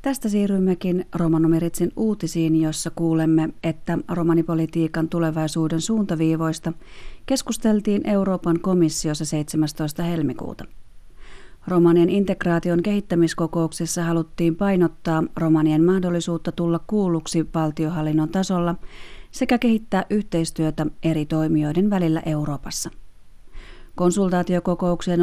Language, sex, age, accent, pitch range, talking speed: Finnish, female, 30-49, native, 160-180 Hz, 80 wpm